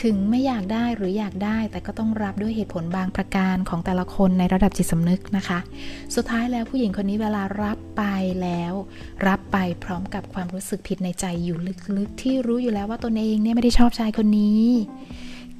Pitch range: 180-220 Hz